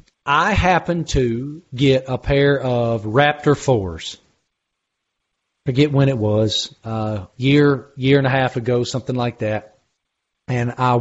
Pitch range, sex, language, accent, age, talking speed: 125-150 Hz, male, English, American, 40-59, 145 wpm